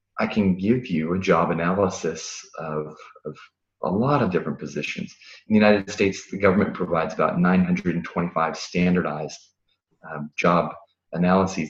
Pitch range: 85-100 Hz